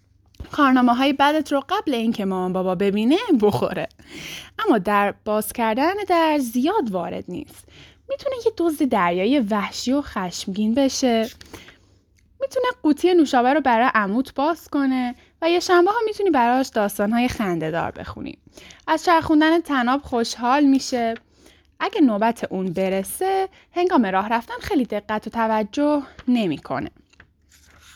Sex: female